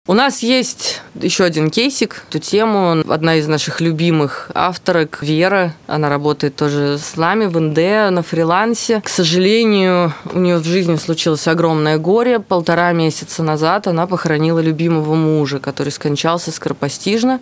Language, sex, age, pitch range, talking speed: Russian, female, 20-39, 155-190 Hz, 145 wpm